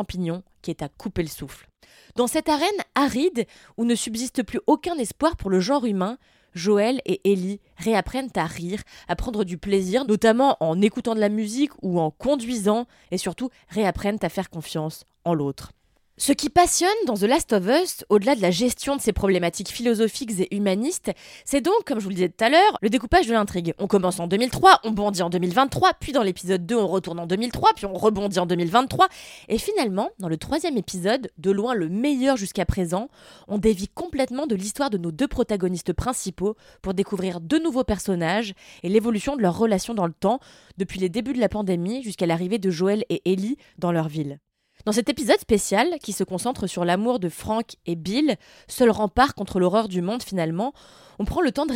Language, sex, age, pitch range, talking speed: French, female, 20-39, 185-255 Hz, 205 wpm